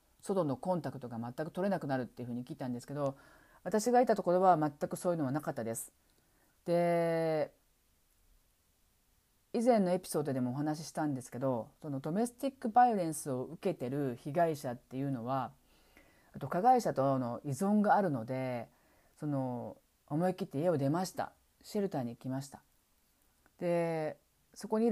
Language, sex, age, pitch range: Japanese, female, 40-59, 130-185 Hz